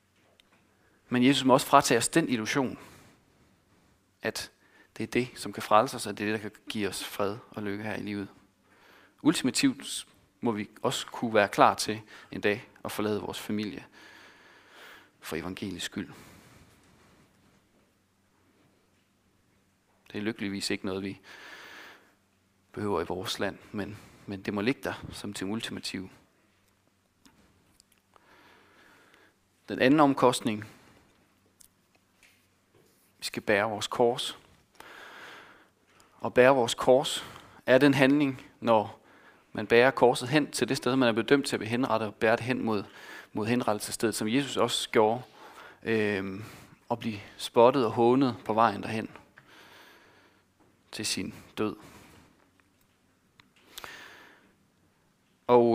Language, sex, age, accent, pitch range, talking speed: Danish, male, 40-59, native, 95-120 Hz, 130 wpm